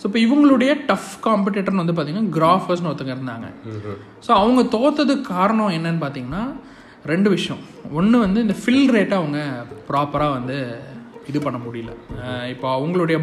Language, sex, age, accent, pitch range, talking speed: Tamil, male, 20-39, native, 125-195 Hz, 140 wpm